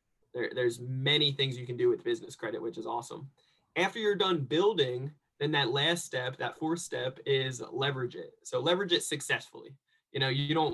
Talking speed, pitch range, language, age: 195 wpm, 130-150 Hz, English, 20-39